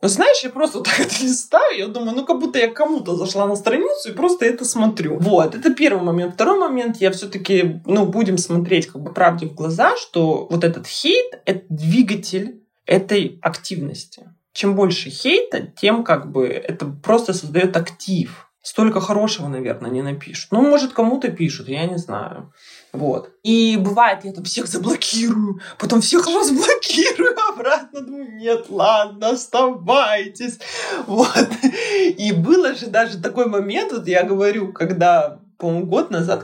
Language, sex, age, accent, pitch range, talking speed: Russian, male, 20-39, native, 170-245 Hz, 160 wpm